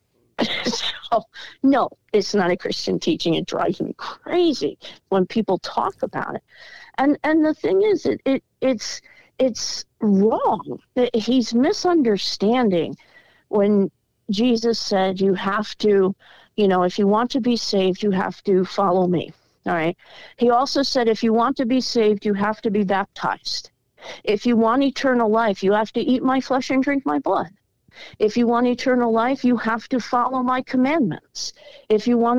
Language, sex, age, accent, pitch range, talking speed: English, female, 50-69, American, 195-255 Hz, 170 wpm